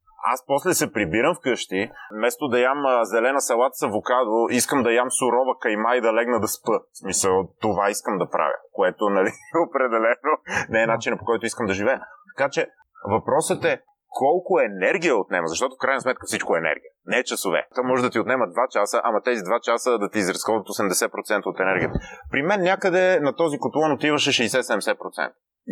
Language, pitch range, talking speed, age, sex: Bulgarian, 110-150 Hz, 185 wpm, 30-49, male